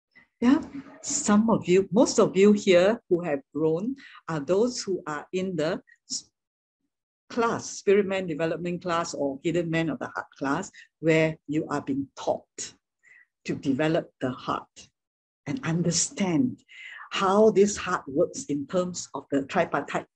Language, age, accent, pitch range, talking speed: English, 60-79, Malaysian, 150-215 Hz, 145 wpm